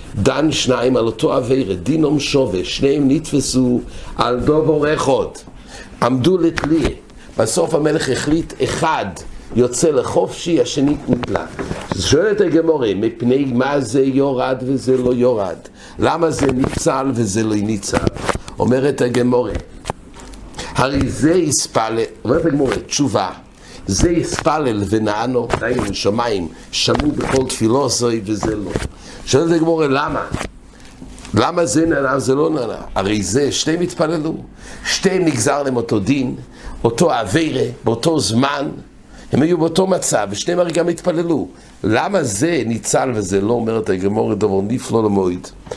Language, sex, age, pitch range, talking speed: English, male, 60-79, 115-155 Hz, 125 wpm